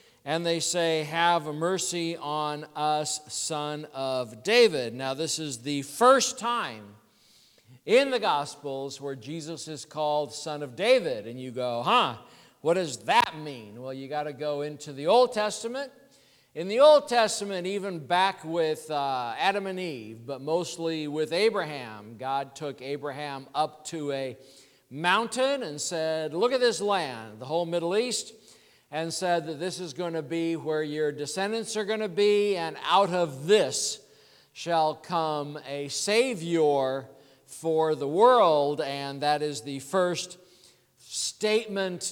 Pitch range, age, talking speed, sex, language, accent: 145-195 Hz, 50-69, 150 wpm, male, English, American